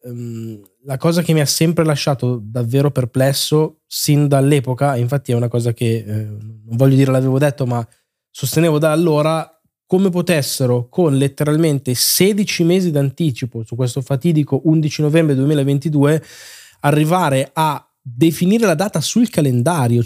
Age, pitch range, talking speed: 20-39, 130-165 Hz, 140 wpm